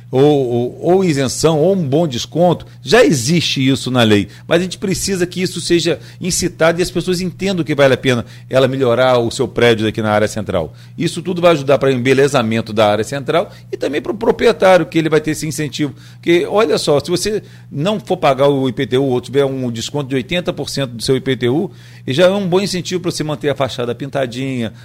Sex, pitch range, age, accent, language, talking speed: male, 120-165 Hz, 40-59, Brazilian, Portuguese, 215 wpm